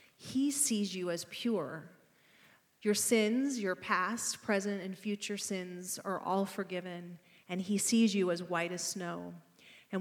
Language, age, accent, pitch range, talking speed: English, 30-49, American, 185-215 Hz, 150 wpm